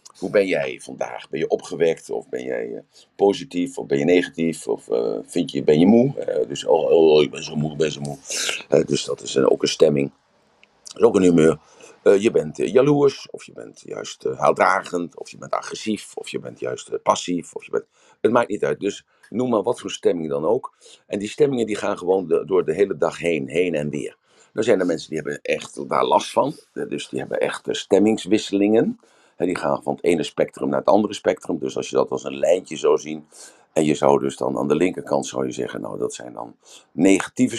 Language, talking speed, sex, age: Dutch, 240 wpm, male, 50-69